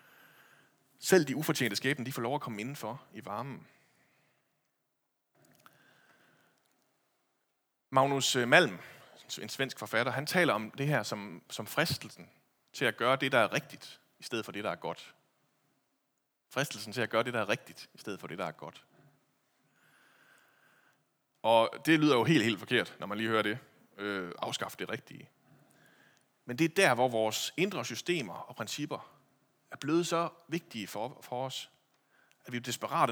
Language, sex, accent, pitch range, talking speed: Danish, male, native, 110-140 Hz, 160 wpm